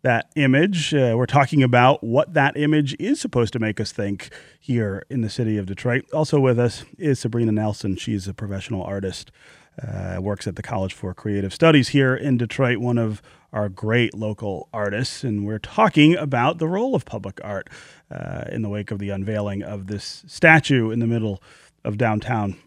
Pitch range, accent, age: 105-135 Hz, American, 30-49